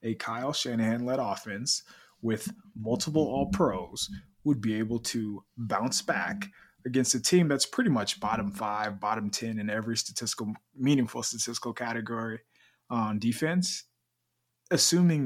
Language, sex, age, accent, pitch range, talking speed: English, male, 20-39, American, 105-120 Hz, 130 wpm